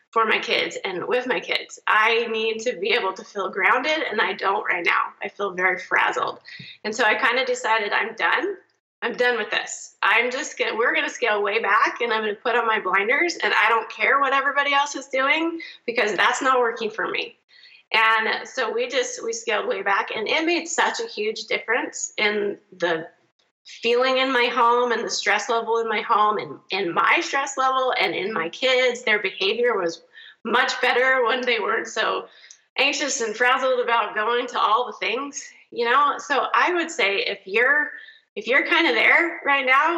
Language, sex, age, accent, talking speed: English, female, 30-49, American, 210 wpm